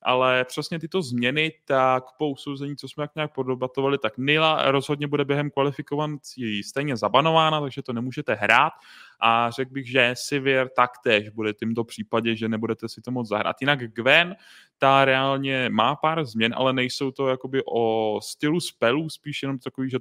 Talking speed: 170 wpm